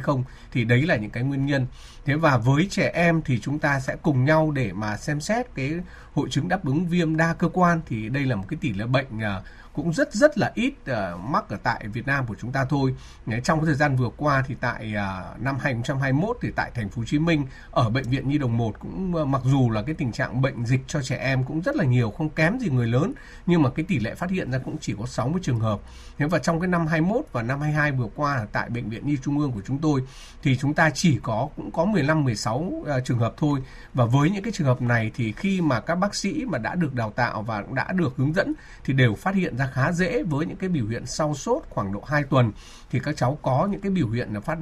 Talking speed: 275 wpm